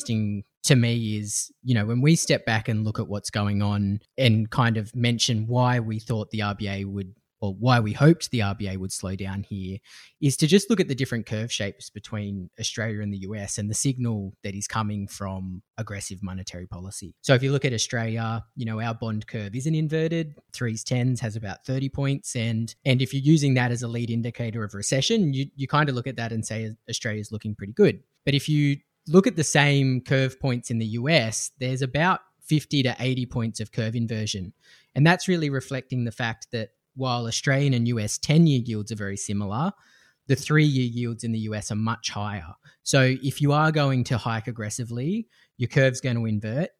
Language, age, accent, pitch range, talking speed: English, 20-39, Australian, 105-130 Hz, 210 wpm